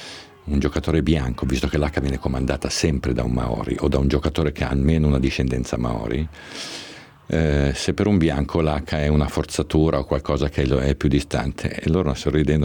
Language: Italian